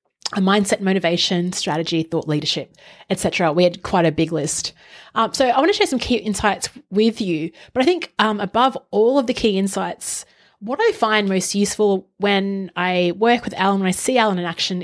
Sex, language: female, English